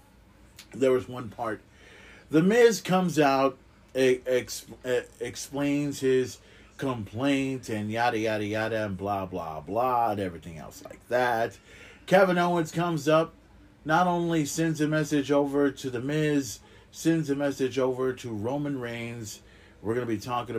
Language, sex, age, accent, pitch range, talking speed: English, male, 40-59, American, 100-125 Hz, 145 wpm